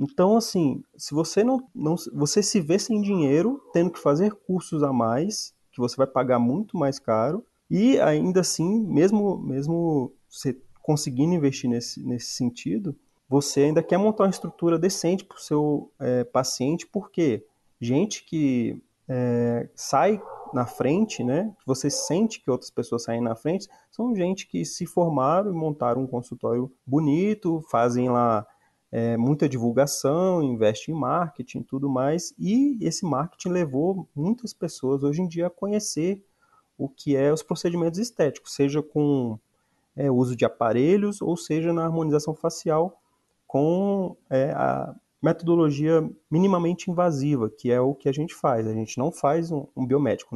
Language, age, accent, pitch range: Portuguese, 30-49, Brazilian, 130-180 Hz